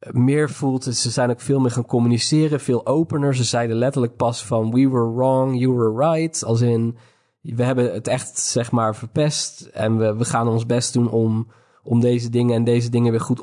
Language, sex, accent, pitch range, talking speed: Dutch, male, Dutch, 110-125 Hz, 210 wpm